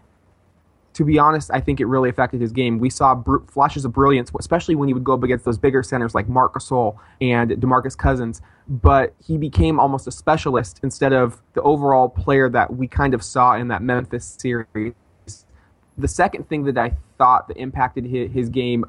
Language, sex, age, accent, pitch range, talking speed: English, male, 20-39, American, 115-145 Hz, 200 wpm